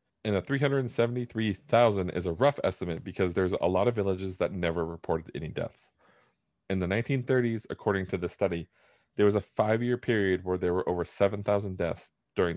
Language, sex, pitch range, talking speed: English, male, 90-120 Hz, 175 wpm